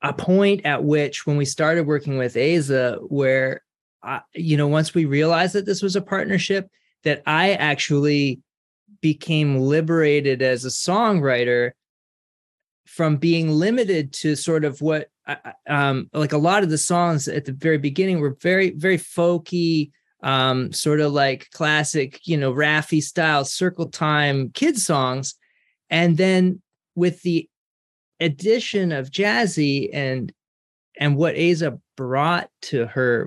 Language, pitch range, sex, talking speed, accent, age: English, 135-170 Hz, male, 145 wpm, American, 30-49